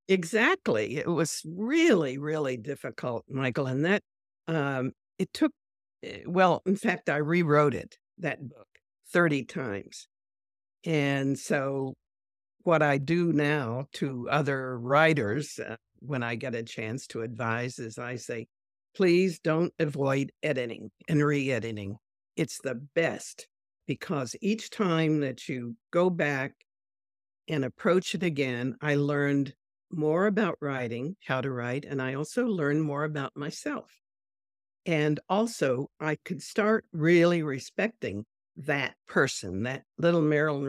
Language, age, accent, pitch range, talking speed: English, 60-79, American, 125-165 Hz, 135 wpm